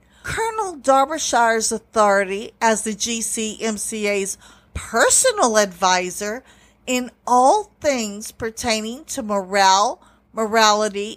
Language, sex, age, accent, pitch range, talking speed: English, female, 50-69, American, 215-305 Hz, 80 wpm